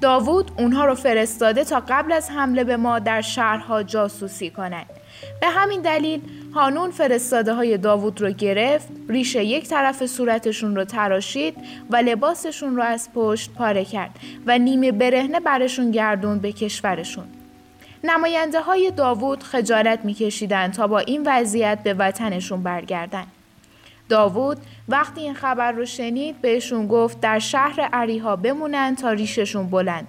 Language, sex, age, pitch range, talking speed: Persian, female, 10-29, 210-270 Hz, 140 wpm